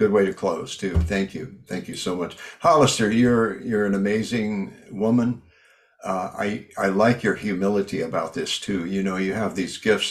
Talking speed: 190 wpm